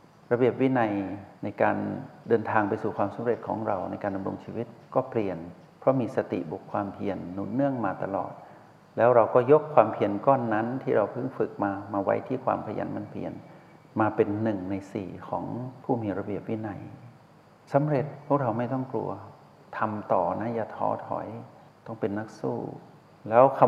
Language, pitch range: Thai, 105-135 Hz